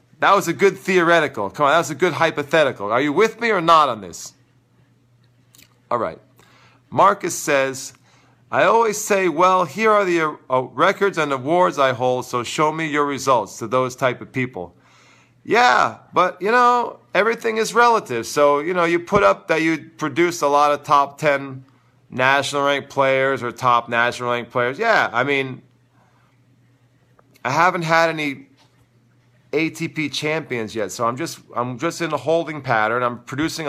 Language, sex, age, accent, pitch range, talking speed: English, male, 40-59, American, 125-160 Hz, 170 wpm